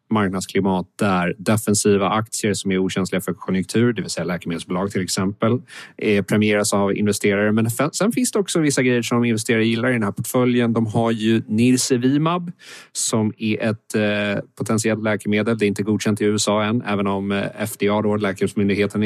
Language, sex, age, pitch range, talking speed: Swedish, male, 30-49, 100-115 Hz, 170 wpm